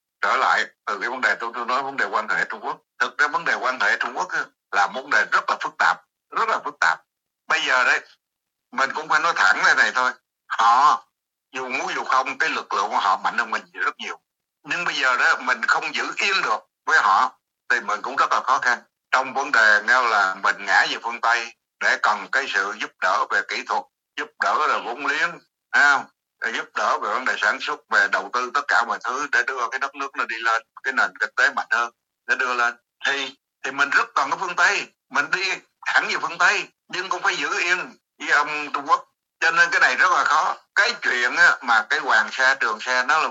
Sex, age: male, 60-79